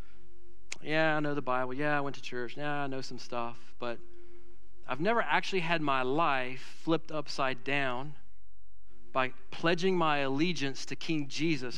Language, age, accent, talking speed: English, 40-59, American, 165 wpm